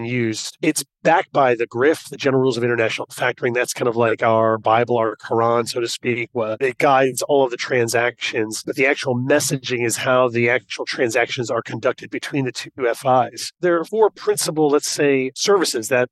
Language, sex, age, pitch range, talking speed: English, male, 40-59, 125-155 Hz, 195 wpm